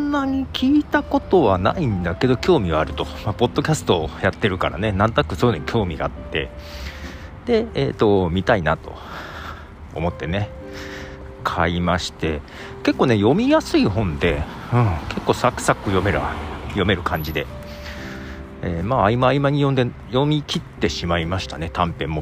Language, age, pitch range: Japanese, 40-59, 85-130 Hz